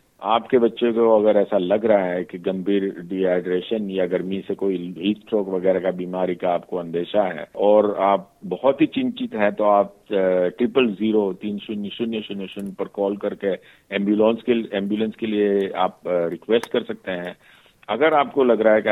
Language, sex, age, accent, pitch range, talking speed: Hindi, male, 50-69, native, 95-110 Hz, 185 wpm